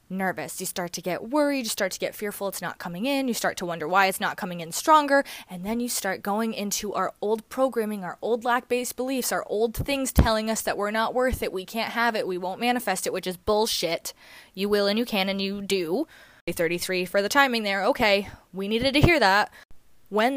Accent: American